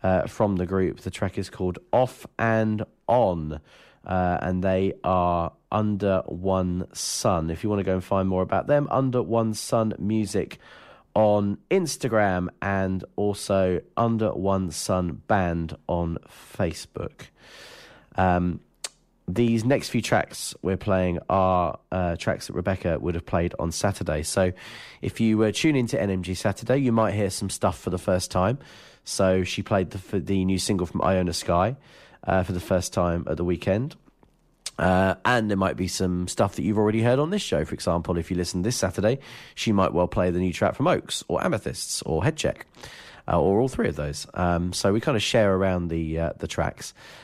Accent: British